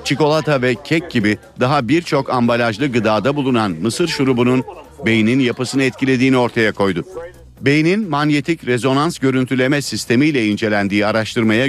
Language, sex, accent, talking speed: Turkish, male, native, 120 wpm